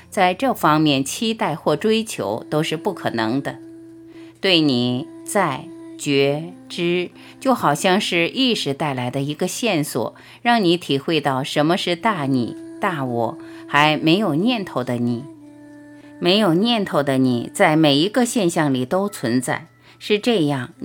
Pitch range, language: 140-215 Hz, Chinese